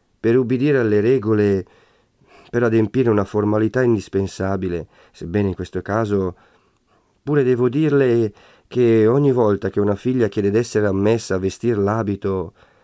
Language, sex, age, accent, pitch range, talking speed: Italian, male, 40-59, native, 95-115 Hz, 130 wpm